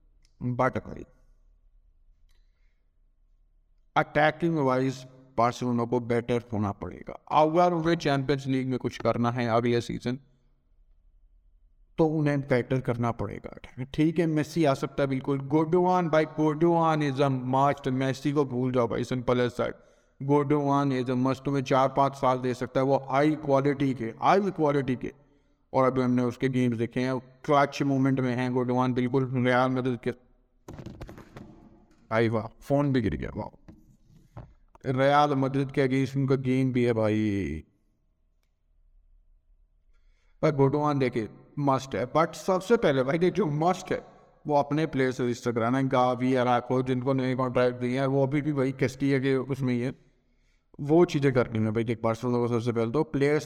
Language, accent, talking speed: Hindi, native, 70 wpm